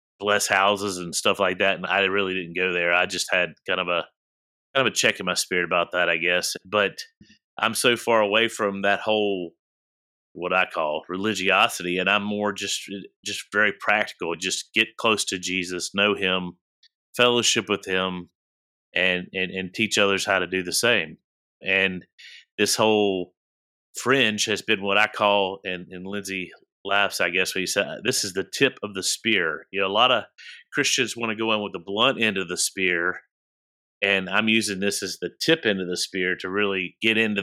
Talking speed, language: 200 wpm, English